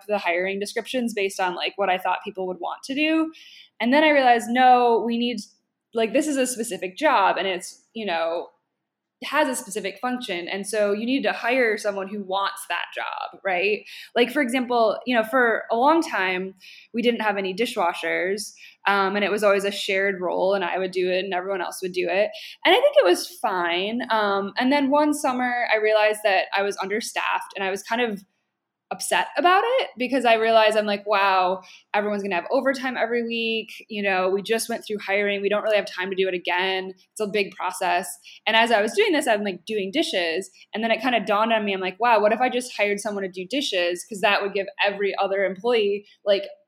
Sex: female